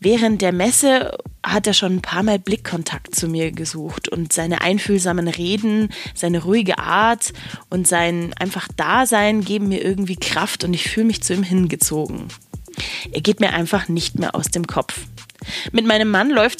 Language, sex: German, female